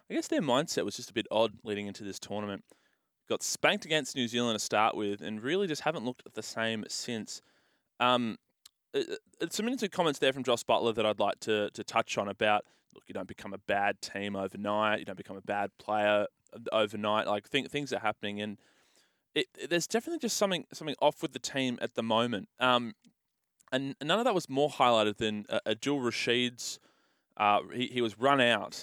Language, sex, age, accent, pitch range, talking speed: English, male, 20-39, Australian, 105-135 Hz, 210 wpm